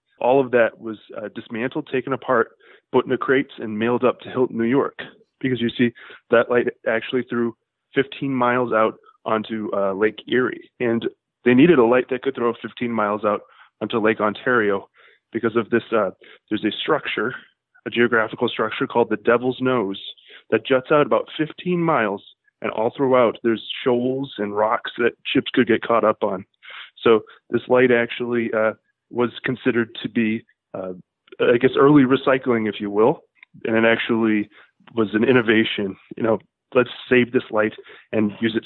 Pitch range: 110-130 Hz